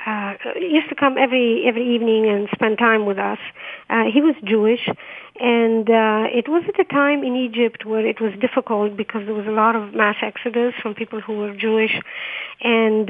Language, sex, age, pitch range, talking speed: English, female, 50-69, 220-270 Hz, 200 wpm